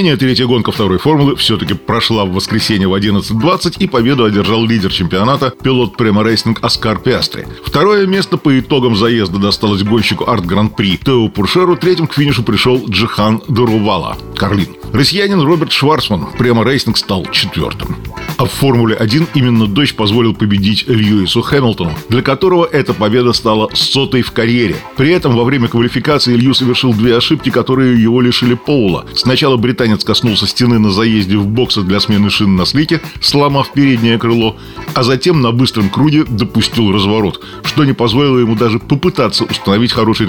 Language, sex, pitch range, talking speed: Russian, male, 110-135 Hz, 155 wpm